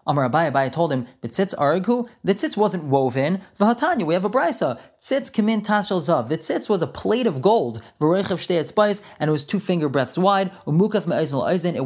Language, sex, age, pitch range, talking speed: English, male, 20-39, 150-195 Hz, 160 wpm